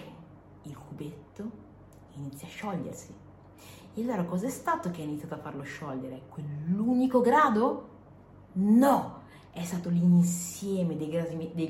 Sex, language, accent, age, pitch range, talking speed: female, Italian, native, 30-49, 165-230 Hz, 125 wpm